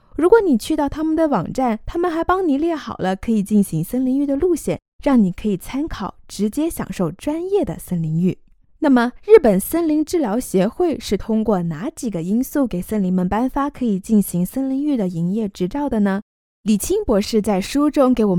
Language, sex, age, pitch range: Chinese, female, 20-39, 195-295 Hz